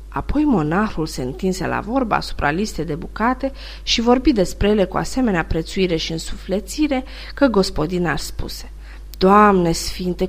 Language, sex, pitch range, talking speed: Romanian, female, 170-250 Hz, 145 wpm